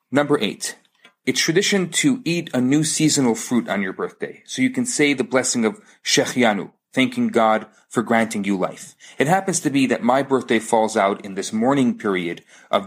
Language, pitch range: English, 115-160 Hz